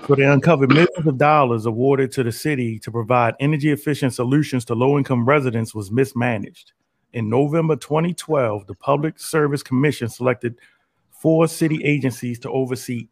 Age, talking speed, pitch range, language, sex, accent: 30-49, 155 wpm, 120-150 Hz, English, male, American